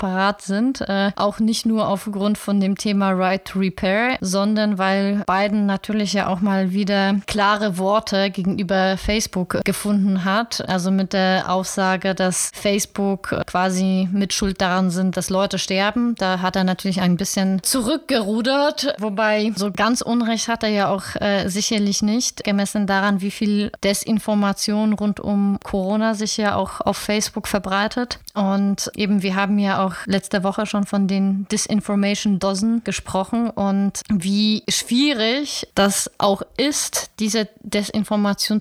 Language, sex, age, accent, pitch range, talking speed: German, female, 20-39, German, 195-215 Hz, 145 wpm